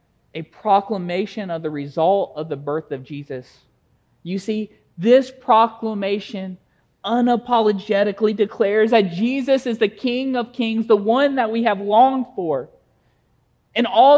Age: 40-59